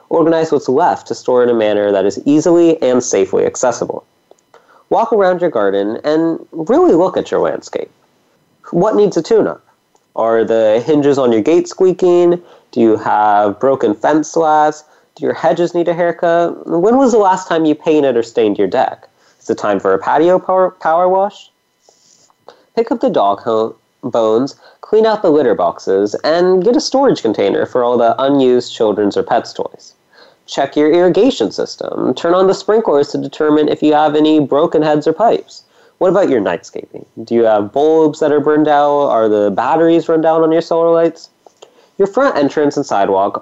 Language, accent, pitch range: English, American, 130-190 Hz